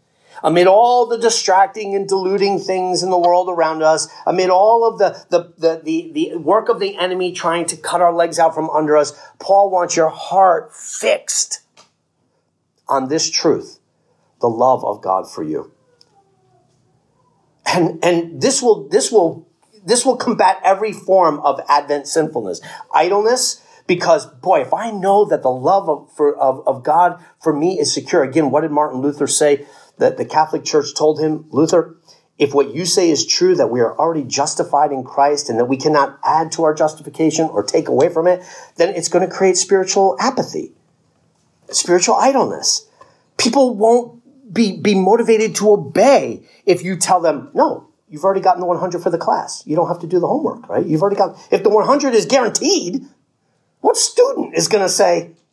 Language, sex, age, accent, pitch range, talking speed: English, male, 50-69, American, 155-215 Hz, 185 wpm